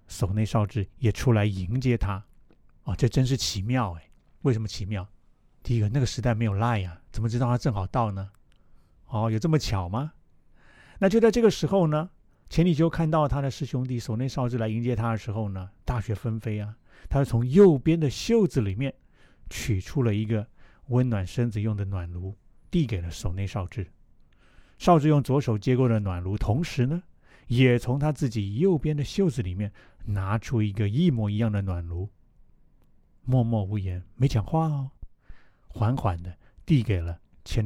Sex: male